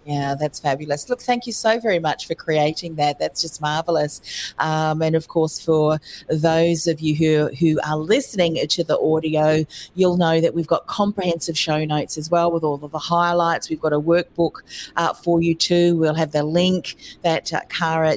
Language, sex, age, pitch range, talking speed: English, female, 40-59, 155-175 Hz, 195 wpm